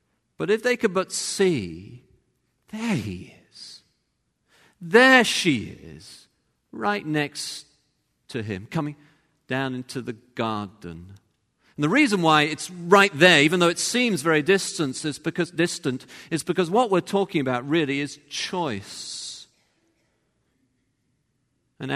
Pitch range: 115-170 Hz